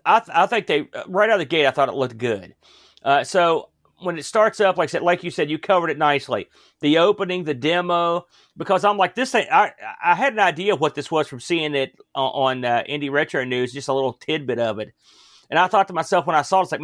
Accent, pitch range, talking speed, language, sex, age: American, 150-185 Hz, 255 wpm, English, male, 40-59